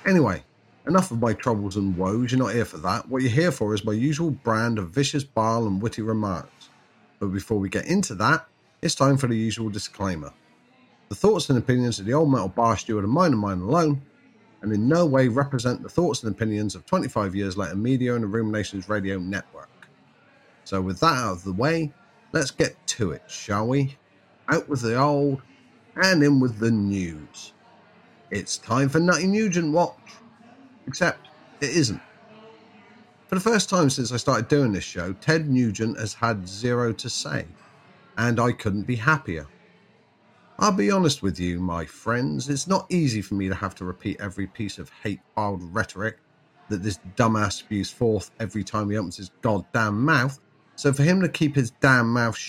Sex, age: male, 30-49